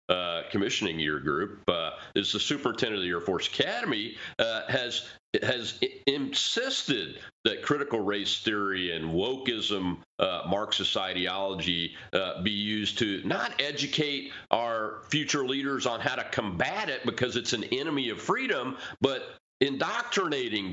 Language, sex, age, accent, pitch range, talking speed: English, male, 40-59, American, 105-140 Hz, 140 wpm